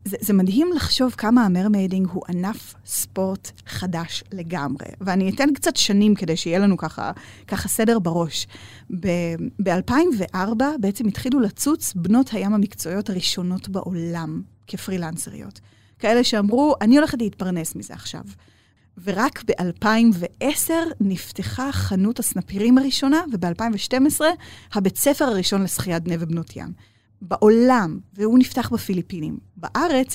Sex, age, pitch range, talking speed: female, 20-39, 175-240 Hz, 115 wpm